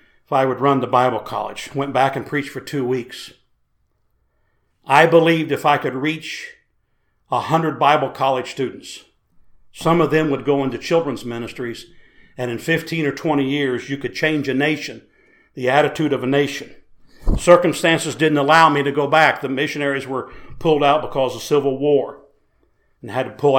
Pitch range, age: 135-160 Hz, 50-69